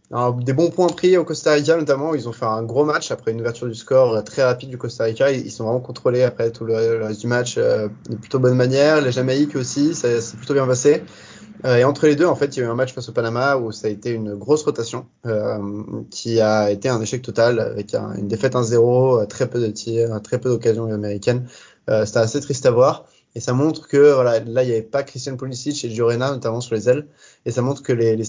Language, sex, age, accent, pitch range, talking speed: French, male, 20-39, French, 110-130 Hz, 255 wpm